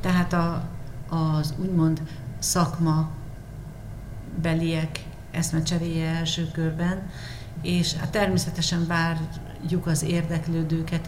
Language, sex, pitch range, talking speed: Hungarian, female, 155-165 Hz, 75 wpm